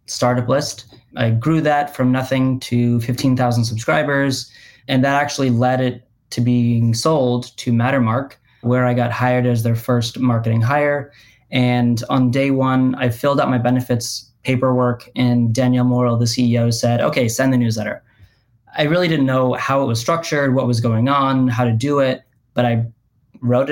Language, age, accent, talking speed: English, 20-39, American, 175 wpm